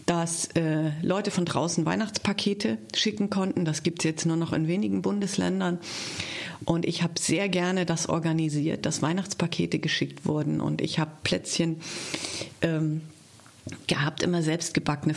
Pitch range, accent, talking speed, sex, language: 155-195 Hz, German, 140 wpm, female, German